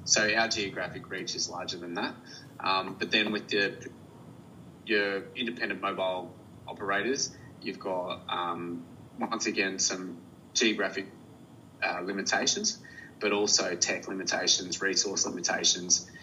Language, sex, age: English, male, 20-39